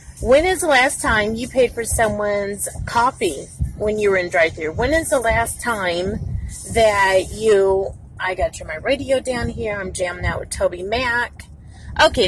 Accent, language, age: American, English, 30-49